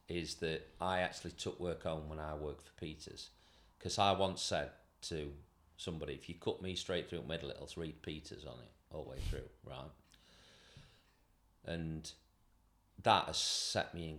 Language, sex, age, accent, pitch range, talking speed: English, male, 40-59, British, 80-95 Hz, 180 wpm